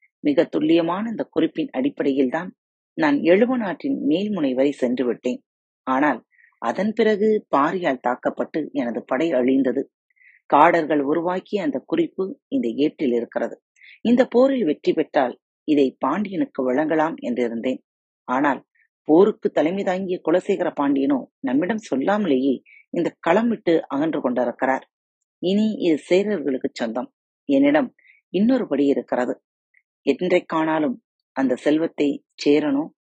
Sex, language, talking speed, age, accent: female, Tamil, 110 wpm, 30-49, native